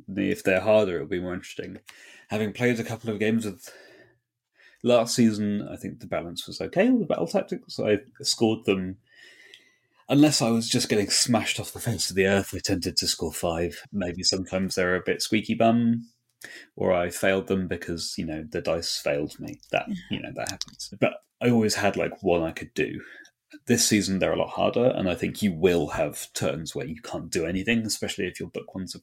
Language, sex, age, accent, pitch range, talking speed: English, male, 30-49, British, 95-115 Hz, 210 wpm